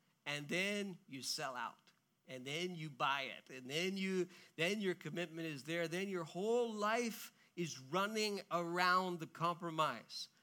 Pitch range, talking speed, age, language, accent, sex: 150-180 Hz, 155 wpm, 50-69, English, American, male